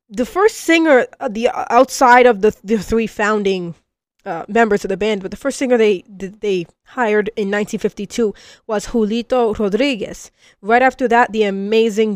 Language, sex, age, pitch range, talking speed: English, female, 20-39, 200-230 Hz, 170 wpm